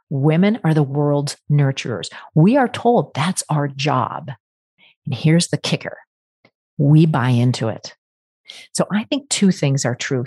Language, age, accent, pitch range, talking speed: English, 40-59, American, 140-180 Hz, 150 wpm